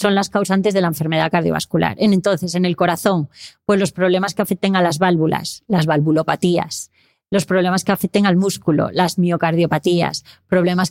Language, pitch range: Spanish, 165-200 Hz